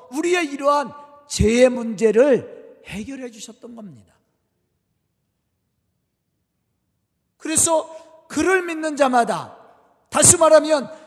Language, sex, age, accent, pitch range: Korean, male, 40-59, native, 235-310 Hz